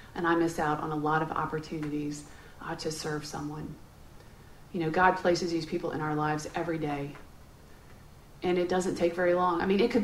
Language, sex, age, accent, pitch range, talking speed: English, female, 40-59, American, 180-240 Hz, 205 wpm